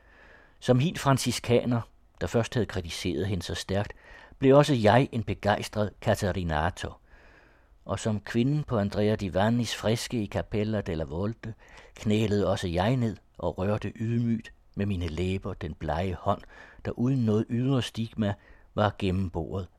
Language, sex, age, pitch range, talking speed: Danish, male, 60-79, 95-120 Hz, 145 wpm